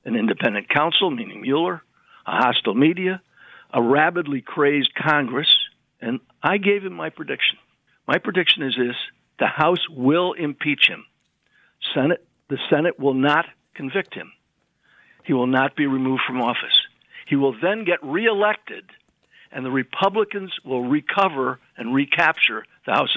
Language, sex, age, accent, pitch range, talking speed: English, male, 60-79, American, 135-175 Hz, 140 wpm